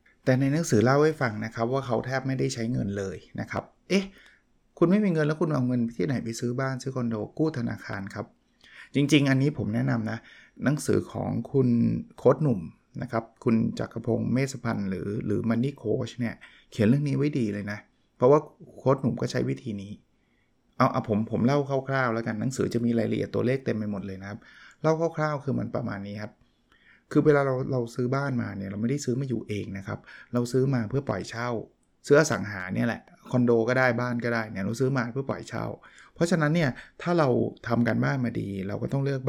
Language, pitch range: Thai, 115-135 Hz